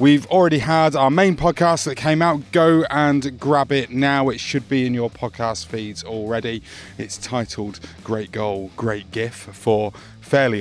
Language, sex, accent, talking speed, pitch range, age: English, male, British, 170 wpm, 110-140 Hz, 30-49